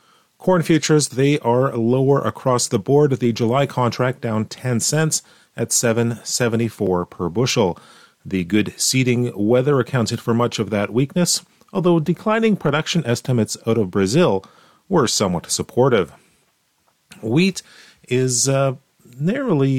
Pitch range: 110-140 Hz